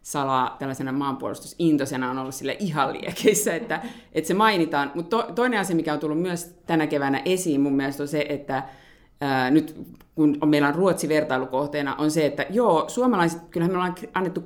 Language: Finnish